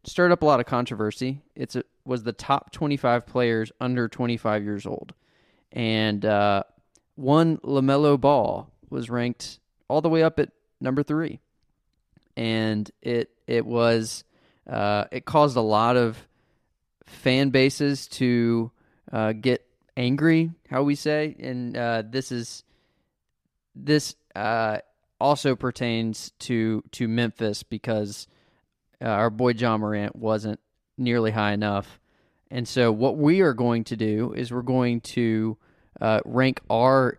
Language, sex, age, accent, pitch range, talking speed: English, male, 20-39, American, 110-130 Hz, 140 wpm